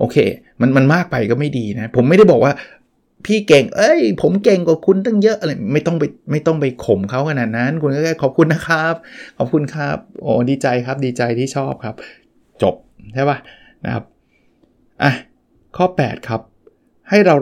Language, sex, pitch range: Thai, male, 115-145 Hz